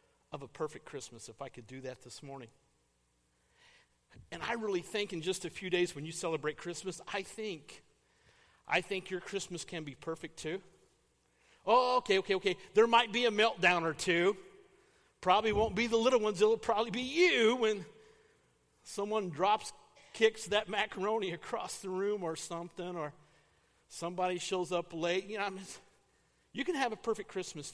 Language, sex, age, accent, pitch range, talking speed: English, male, 50-69, American, 155-220 Hz, 170 wpm